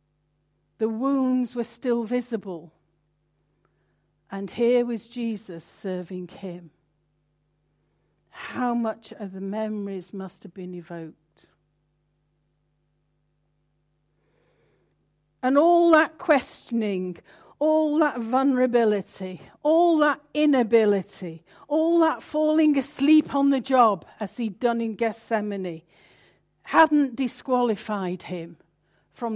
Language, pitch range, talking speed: English, 175-260 Hz, 95 wpm